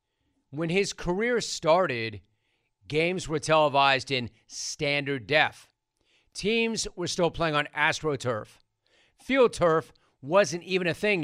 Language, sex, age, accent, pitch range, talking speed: English, male, 40-59, American, 130-170 Hz, 110 wpm